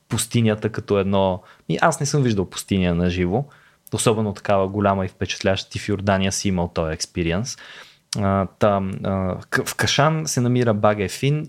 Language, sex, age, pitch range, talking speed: Bulgarian, male, 20-39, 105-135 Hz, 145 wpm